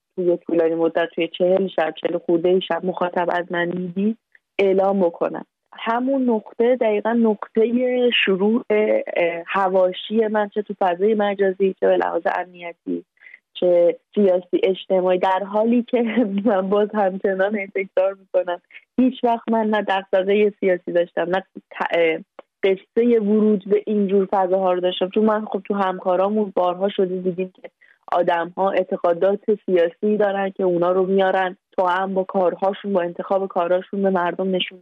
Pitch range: 180-210 Hz